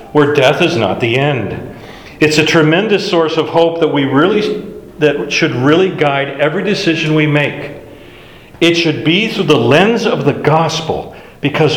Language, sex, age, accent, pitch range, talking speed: English, male, 50-69, American, 120-165 Hz, 170 wpm